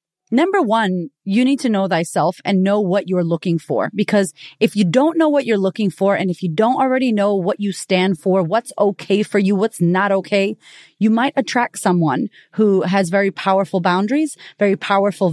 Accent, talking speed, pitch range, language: American, 195 wpm, 175-220 Hz, English